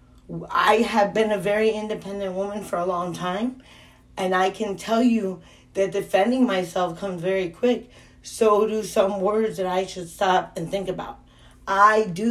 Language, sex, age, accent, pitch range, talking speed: English, female, 40-59, American, 185-225 Hz, 170 wpm